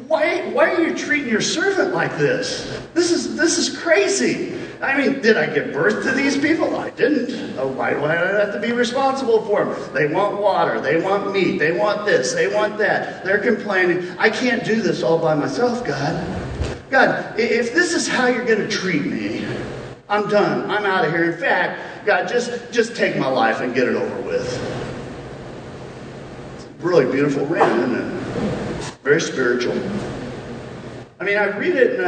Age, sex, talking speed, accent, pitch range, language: 40-59, male, 180 wpm, American, 195-320 Hz, English